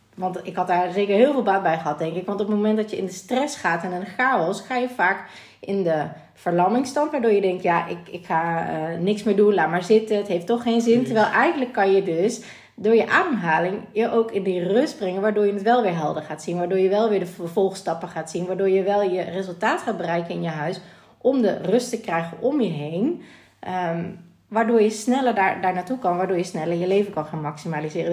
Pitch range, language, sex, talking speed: 175-215 Hz, Dutch, female, 245 wpm